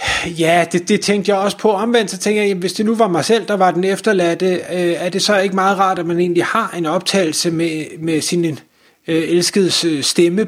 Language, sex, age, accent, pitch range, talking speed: Danish, male, 30-49, native, 155-185 Hz, 240 wpm